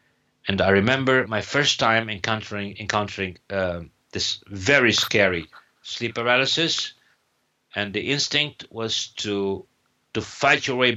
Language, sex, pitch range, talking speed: English, male, 100-130 Hz, 125 wpm